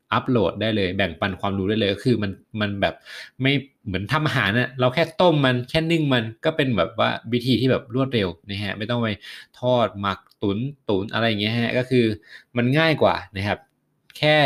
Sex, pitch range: male, 100-125 Hz